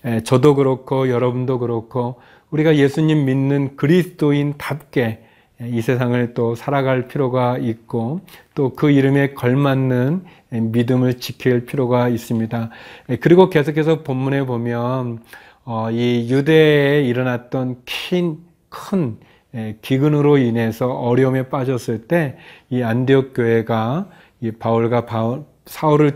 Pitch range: 120-145 Hz